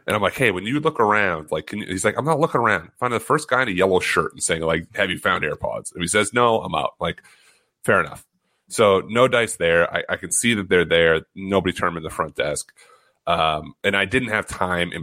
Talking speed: 265 wpm